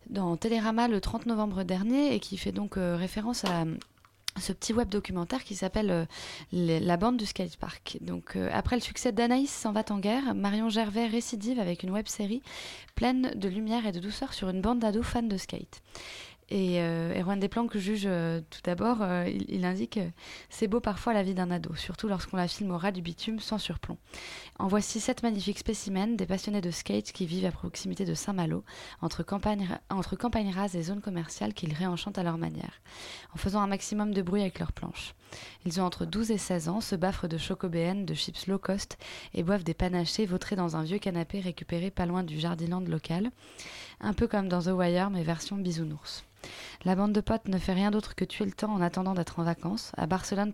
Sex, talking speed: female, 215 wpm